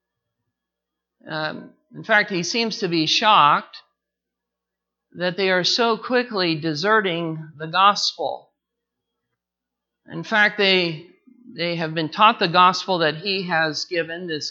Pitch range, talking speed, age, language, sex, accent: 165-215 Hz, 125 wpm, 50-69, English, male, American